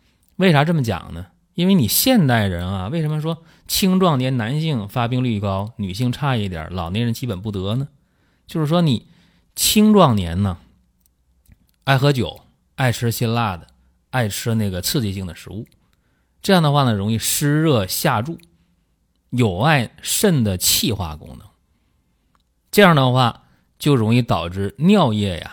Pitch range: 90-130 Hz